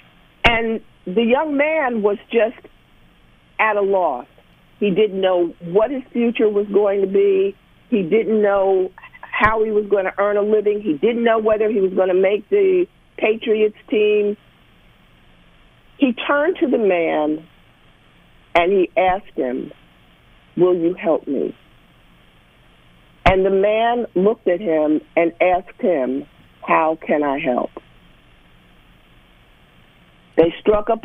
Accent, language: American, English